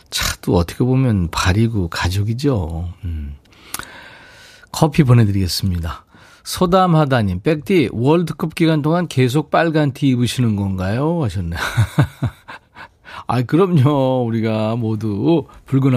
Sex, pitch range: male, 100-145 Hz